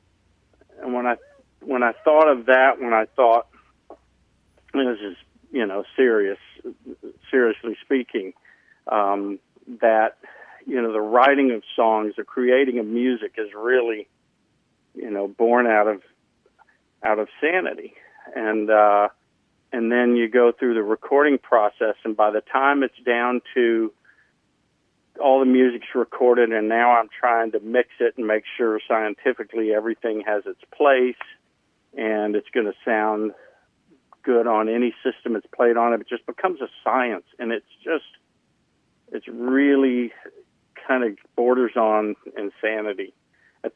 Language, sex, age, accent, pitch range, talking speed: English, male, 50-69, American, 105-125 Hz, 145 wpm